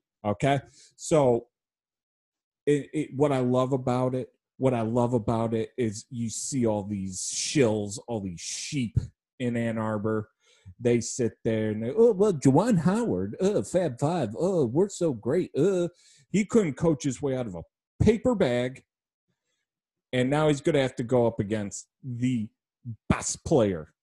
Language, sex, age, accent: English, male, 30-49, American